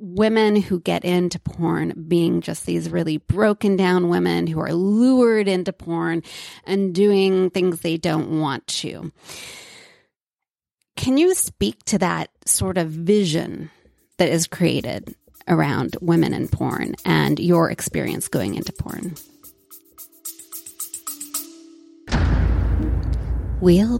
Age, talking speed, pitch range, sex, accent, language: 30-49, 115 wpm, 165-230 Hz, female, American, English